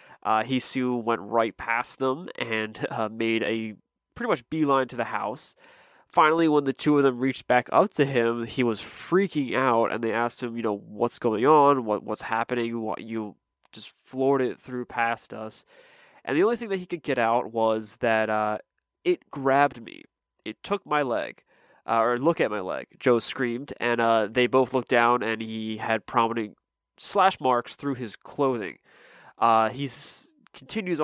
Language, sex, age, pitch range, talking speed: English, male, 20-39, 115-140 Hz, 185 wpm